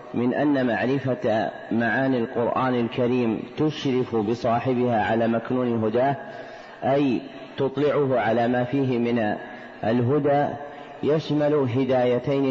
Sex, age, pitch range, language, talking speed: male, 40-59, 120-140 Hz, Arabic, 95 wpm